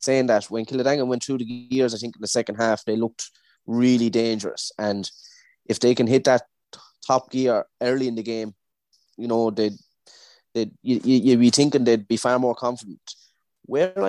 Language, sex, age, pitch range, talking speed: English, male, 20-39, 110-130 Hz, 185 wpm